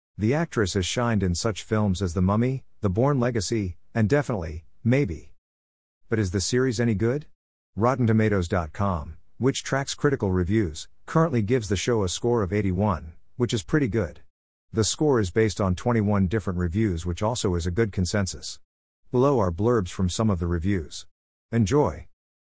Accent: American